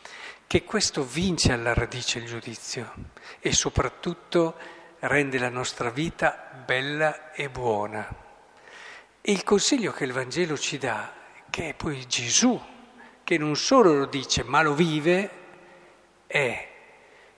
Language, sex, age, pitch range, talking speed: Italian, male, 50-69, 135-185 Hz, 125 wpm